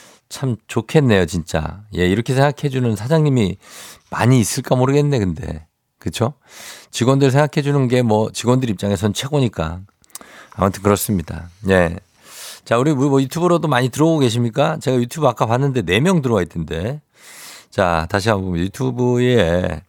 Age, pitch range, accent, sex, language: 50-69, 95-135 Hz, native, male, Korean